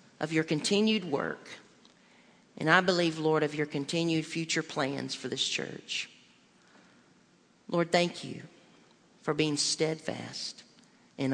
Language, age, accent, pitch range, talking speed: English, 40-59, American, 165-230 Hz, 120 wpm